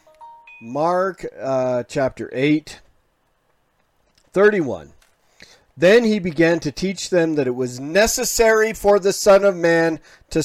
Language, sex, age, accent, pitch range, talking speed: English, male, 40-59, American, 140-175 Hz, 120 wpm